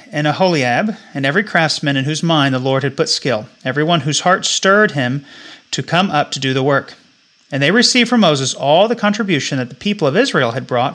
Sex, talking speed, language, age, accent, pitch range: male, 225 wpm, English, 30-49, American, 135-185 Hz